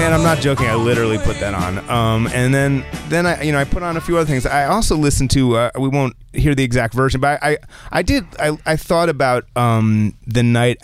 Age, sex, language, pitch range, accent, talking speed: 30-49, male, English, 100-120 Hz, American, 255 wpm